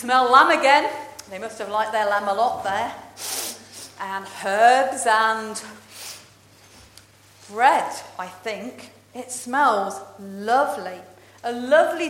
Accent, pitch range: British, 195-295 Hz